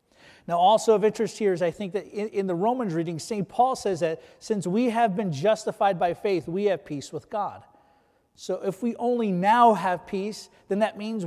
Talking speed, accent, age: 215 wpm, American, 30-49